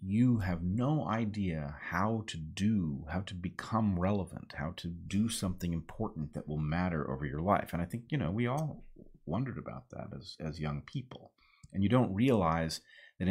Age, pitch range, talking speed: 30-49, 75-100 Hz, 185 wpm